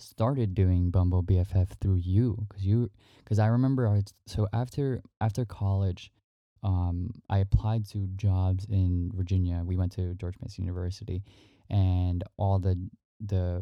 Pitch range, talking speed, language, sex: 95-110 Hz, 145 wpm, English, male